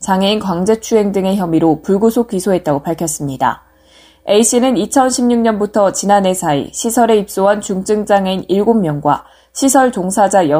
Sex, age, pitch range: female, 20-39, 175-235 Hz